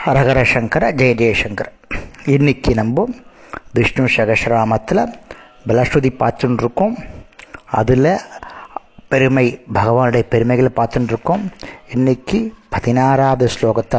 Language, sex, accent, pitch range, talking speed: Tamil, male, native, 115-140 Hz, 85 wpm